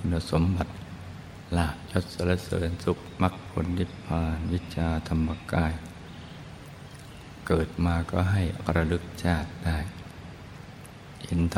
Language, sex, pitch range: Thai, male, 80-95 Hz